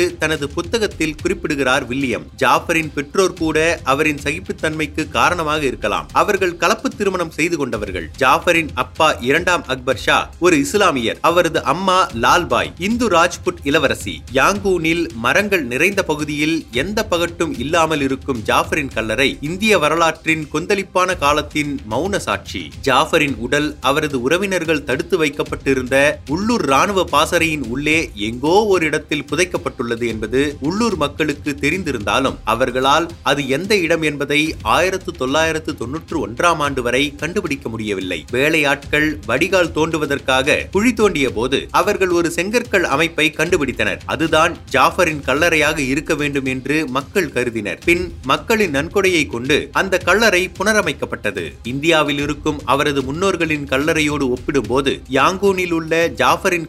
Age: 30-49